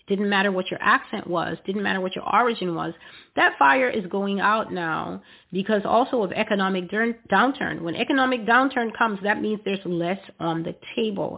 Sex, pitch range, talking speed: female, 175-215 Hz, 180 wpm